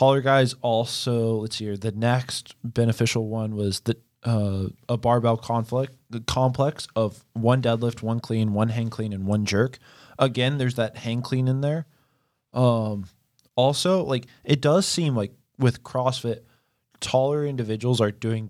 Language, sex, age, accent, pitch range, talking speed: English, male, 20-39, American, 105-125 Hz, 160 wpm